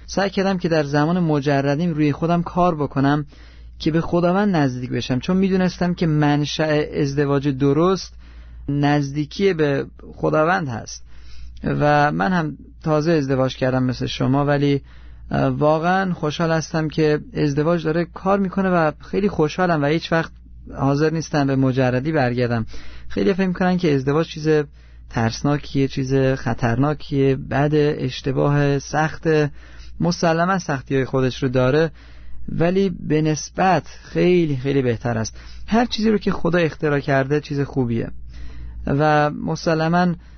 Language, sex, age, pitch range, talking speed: Persian, male, 30-49, 130-170 Hz, 130 wpm